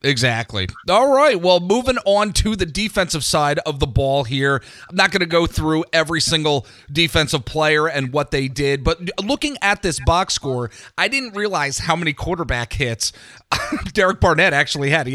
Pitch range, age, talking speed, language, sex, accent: 135-165 Hz, 40-59, 180 wpm, English, male, American